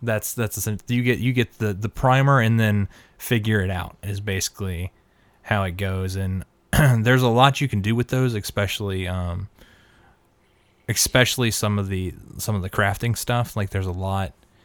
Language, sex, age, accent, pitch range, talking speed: English, male, 20-39, American, 100-115 Hz, 180 wpm